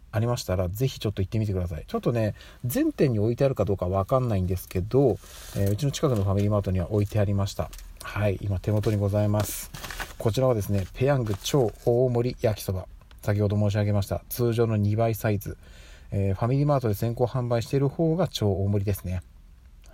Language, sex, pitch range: Japanese, male, 95-130 Hz